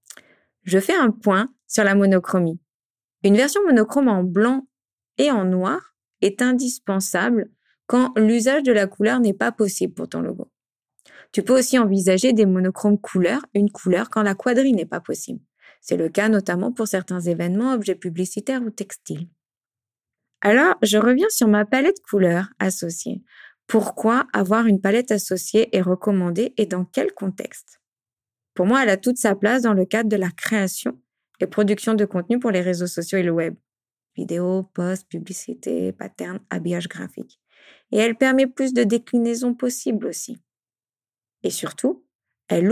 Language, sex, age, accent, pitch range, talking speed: French, female, 20-39, French, 185-230 Hz, 160 wpm